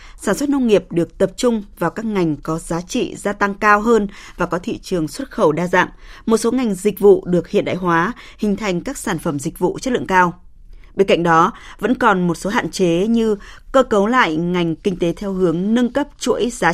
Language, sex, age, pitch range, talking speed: Vietnamese, female, 20-39, 170-215 Hz, 235 wpm